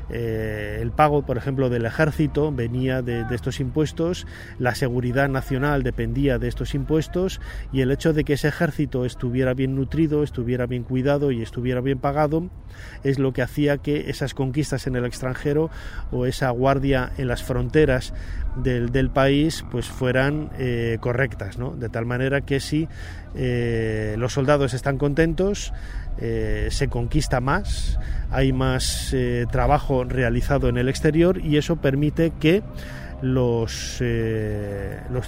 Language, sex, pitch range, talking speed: Spanish, male, 120-145 Hz, 145 wpm